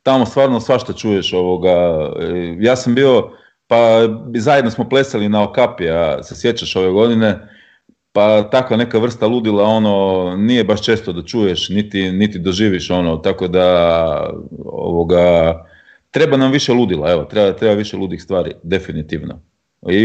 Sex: male